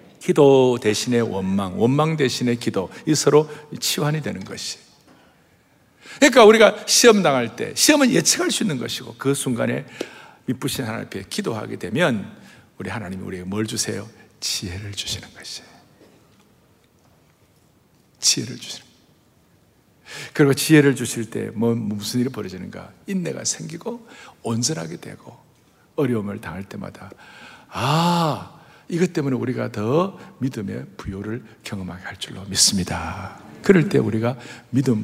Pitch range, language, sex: 110-160 Hz, Korean, male